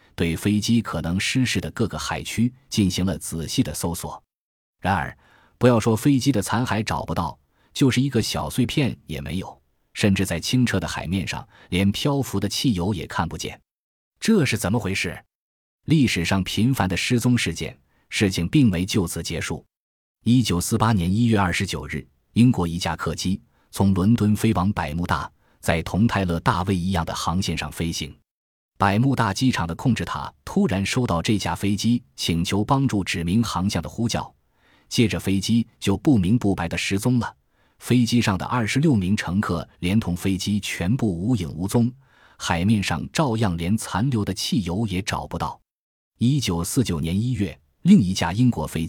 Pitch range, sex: 85-115 Hz, male